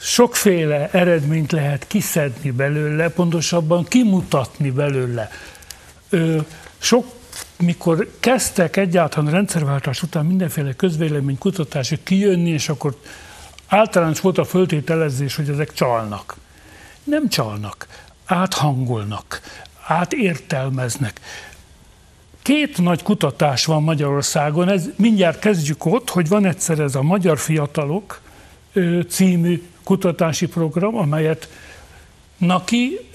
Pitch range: 145-195 Hz